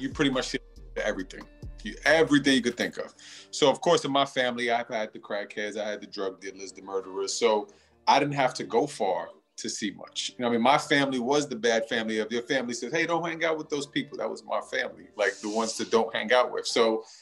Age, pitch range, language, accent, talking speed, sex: 30-49, 115-145 Hz, English, American, 255 wpm, male